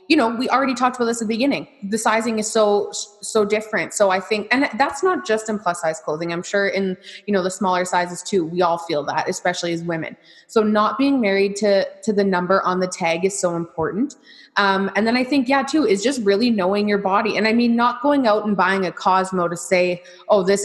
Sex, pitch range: female, 185-220 Hz